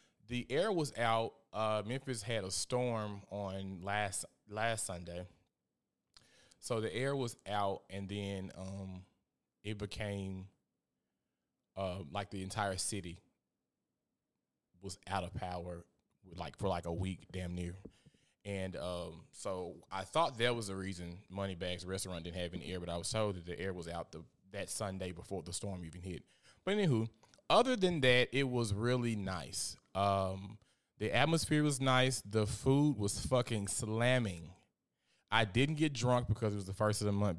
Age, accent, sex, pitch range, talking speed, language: 20-39, American, male, 95-120 Hz, 165 wpm, English